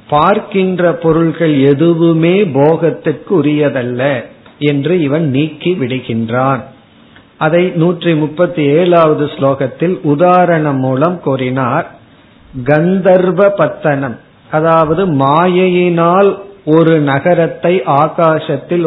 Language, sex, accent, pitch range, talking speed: Tamil, male, native, 145-175 Hz, 75 wpm